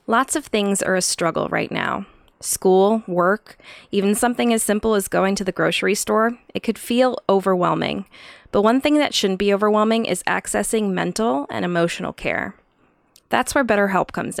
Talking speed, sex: 170 wpm, female